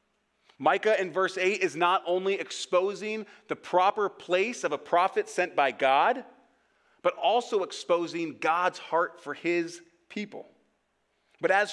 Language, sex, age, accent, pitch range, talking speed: English, male, 30-49, American, 140-195 Hz, 140 wpm